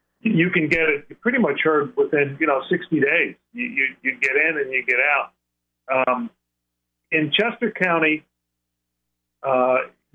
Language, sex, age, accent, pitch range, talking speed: English, male, 40-59, American, 115-165 Hz, 155 wpm